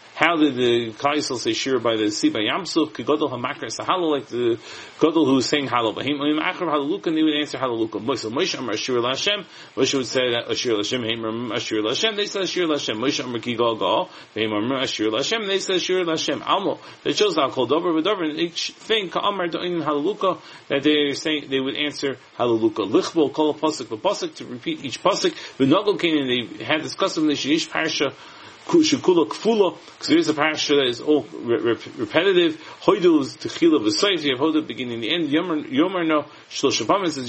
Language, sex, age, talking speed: English, male, 40-59, 100 wpm